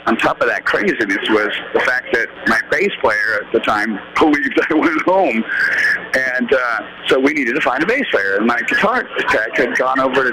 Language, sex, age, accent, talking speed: English, male, 50-69, American, 215 wpm